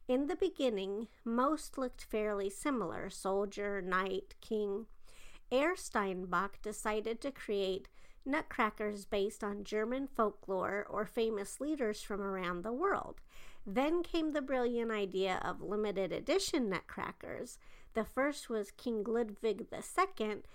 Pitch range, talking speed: 200-245 Hz, 120 wpm